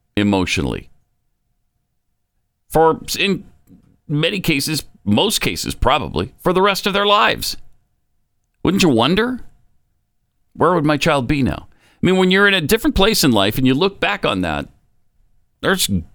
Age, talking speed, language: 50-69, 150 wpm, English